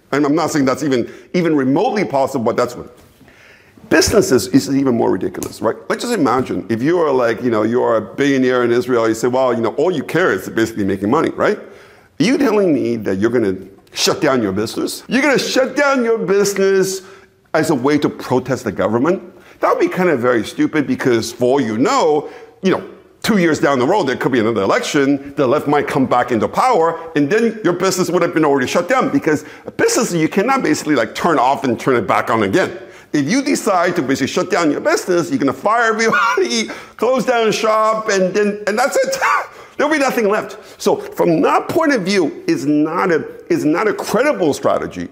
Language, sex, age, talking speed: Hebrew, male, 50-69, 220 wpm